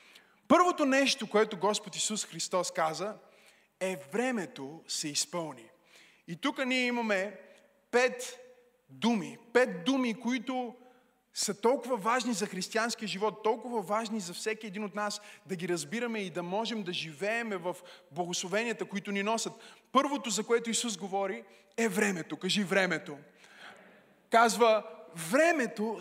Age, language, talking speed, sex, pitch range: 20-39, Bulgarian, 130 wpm, male, 185-230 Hz